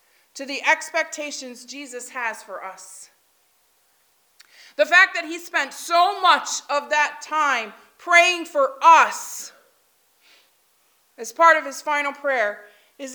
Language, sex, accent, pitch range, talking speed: English, female, American, 280-345 Hz, 125 wpm